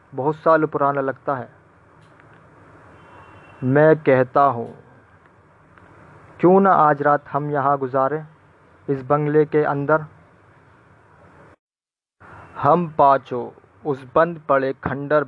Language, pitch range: Hindi, 130-150 Hz